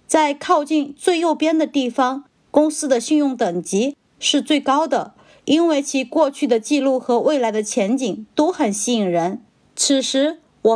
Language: Chinese